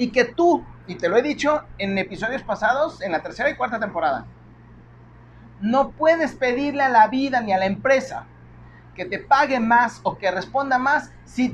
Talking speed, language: 185 wpm, Spanish